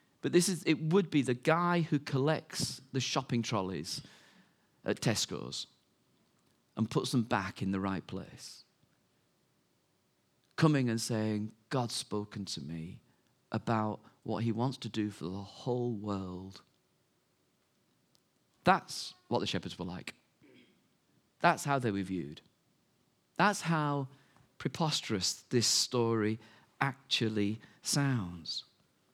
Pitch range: 110-150 Hz